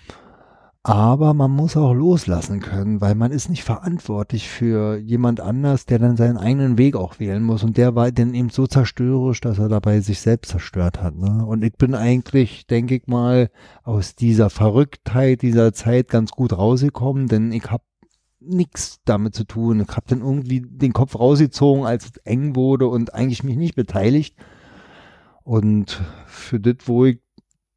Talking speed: 170 wpm